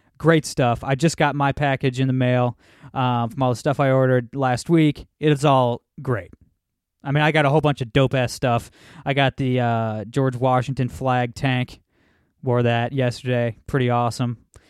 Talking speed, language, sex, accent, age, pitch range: 190 wpm, English, male, American, 20-39, 120-150 Hz